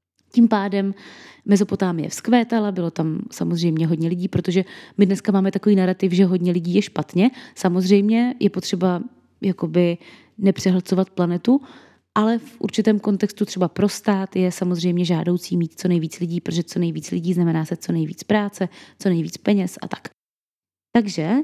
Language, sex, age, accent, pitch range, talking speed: Czech, female, 20-39, native, 175-205 Hz, 150 wpm